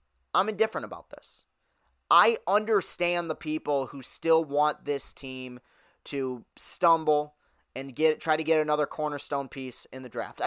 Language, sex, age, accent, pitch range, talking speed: English, male, 30-49, American, 135-180 Hz, 150 wpm